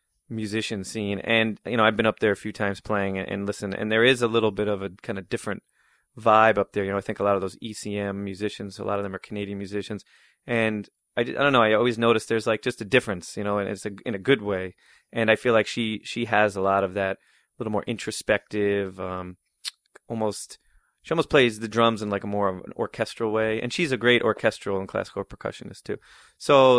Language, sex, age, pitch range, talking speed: English, male, 30-49, 100-115 Hz, 240 wpm